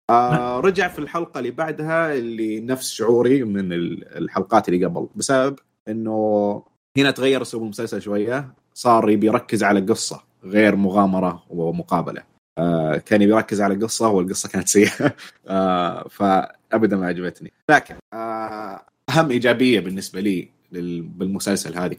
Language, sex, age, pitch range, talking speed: Arabic, male, 30-49, 95-120 Hz, 135 wpm